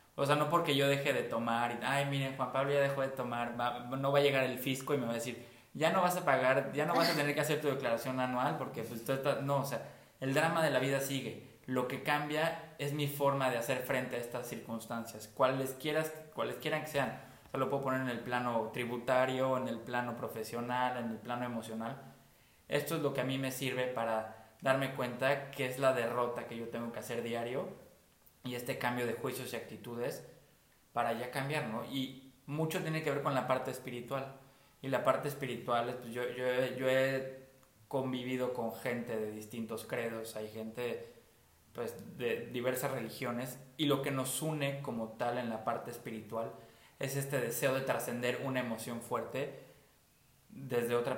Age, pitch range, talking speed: 20-39, 120-140 Hz, 205 wpm